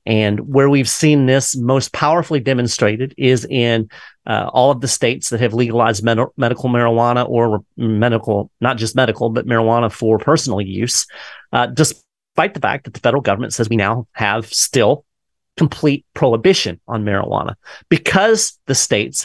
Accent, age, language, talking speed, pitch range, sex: American, 30-49, English, 155 wpm, 110-135 Hz, male